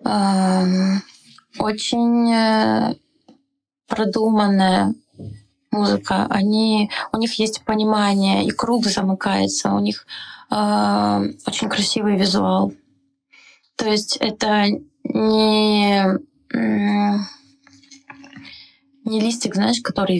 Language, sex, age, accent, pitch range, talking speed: Russian, female, 20-39, native, 190-235 Hz, 70 wpm